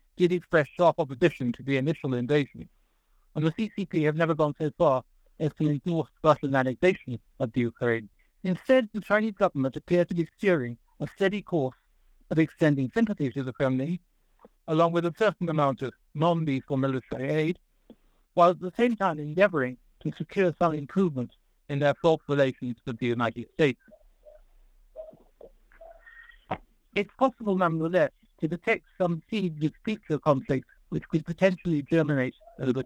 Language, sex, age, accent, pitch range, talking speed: English, male, 60-79, American, 140-180 Hz, 150 wpm